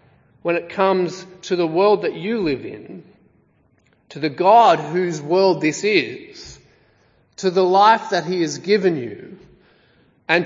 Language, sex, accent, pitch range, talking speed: English, male, Australian, 140-185 Hz, 150 wpm